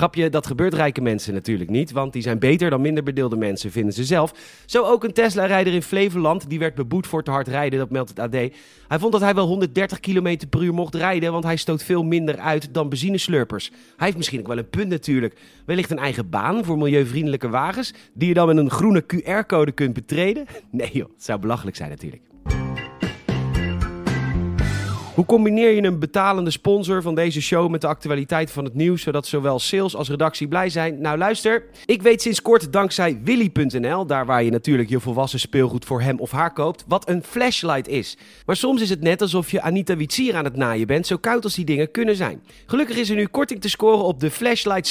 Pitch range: 135-190 Hz